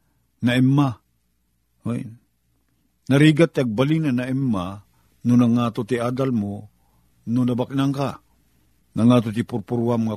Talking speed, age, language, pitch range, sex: 125 wpm, 50-69, Filipino, 80-120 Hz, male